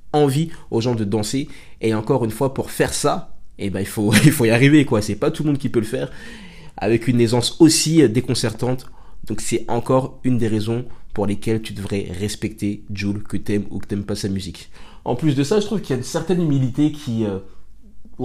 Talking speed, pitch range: 225 wpm, 100-120 Hz